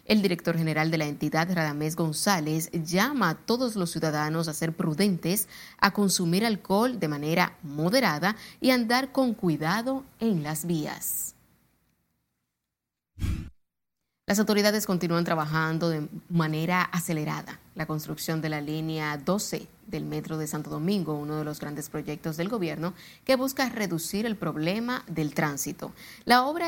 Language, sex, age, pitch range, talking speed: Spanish, female, 30-49, 155-210 Hz, 140 wpm